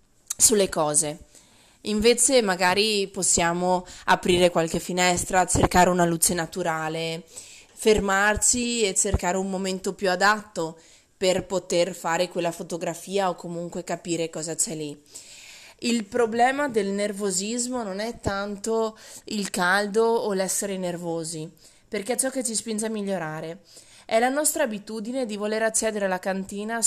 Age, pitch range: 20-39, 175-210 Hz